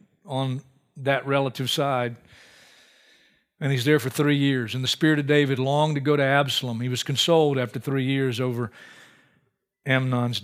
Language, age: English, 40-59